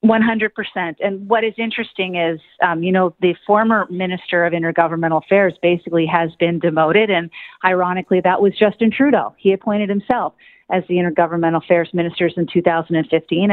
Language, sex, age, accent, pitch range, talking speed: English, female, 40-59, American, 170-205 Hz, 165 wpm